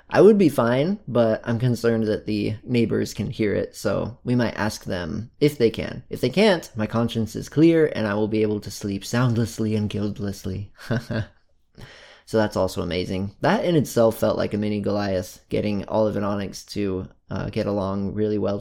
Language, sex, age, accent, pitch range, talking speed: English, male, 20-39, American, 100-115 Hz, 195 wpm